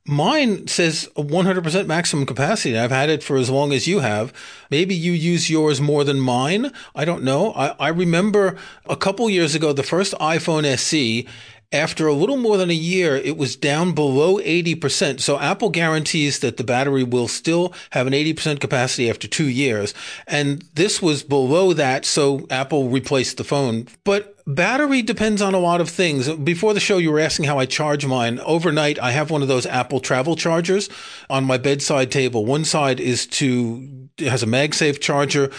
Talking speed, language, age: 190 wpm, English, 40-59